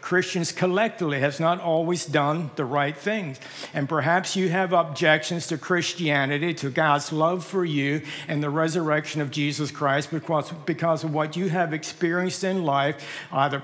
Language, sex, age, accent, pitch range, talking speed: English, male, 60-79, American, 150-175 Hz, 165 wpm